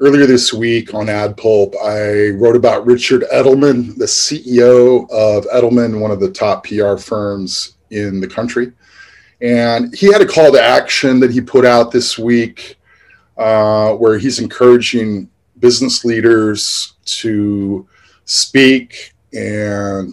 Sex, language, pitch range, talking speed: male, English, 105-125 Hz, 135 wpm